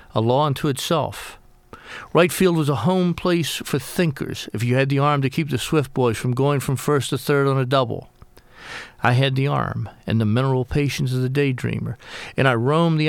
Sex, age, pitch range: male, 50-69, 130-160 Hz